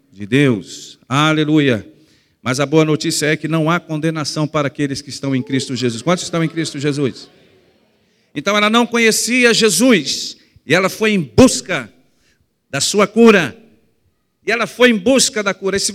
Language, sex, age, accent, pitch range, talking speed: Portuguese, male, 50-69, Brazilian, 155-230 Hz, 175 wpm